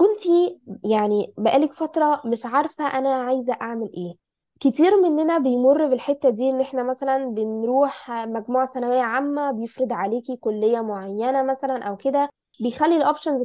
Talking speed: 140 wpm